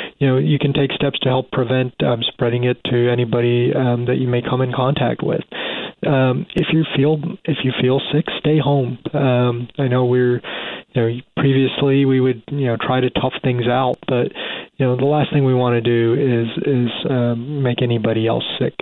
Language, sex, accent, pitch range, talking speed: English, male, American, 120-140 Hz, 205 wpm